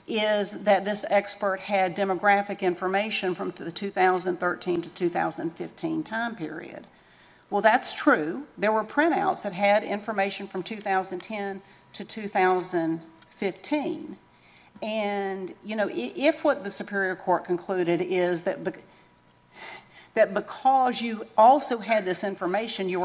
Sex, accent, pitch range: female, American, 175-215 Hz